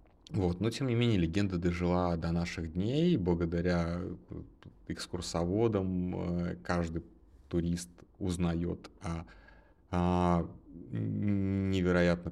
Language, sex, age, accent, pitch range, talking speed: Russian, male, 30-49, native, 85-105 Hz, 85 wpm